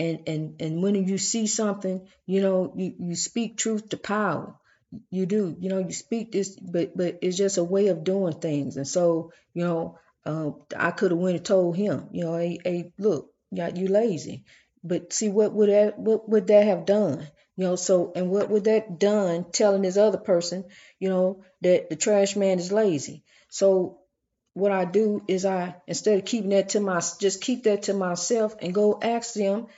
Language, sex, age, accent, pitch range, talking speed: English, female, 40-59, American, 175-210 Hz, 205 wpm